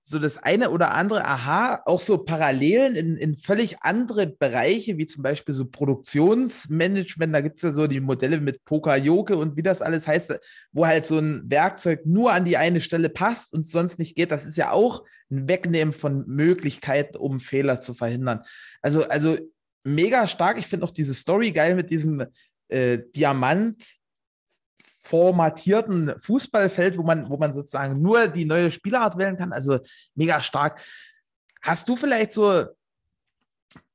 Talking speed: 170 wpm